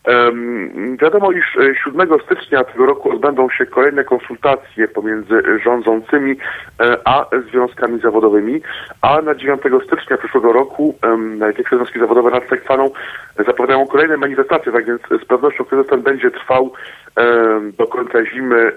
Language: Polish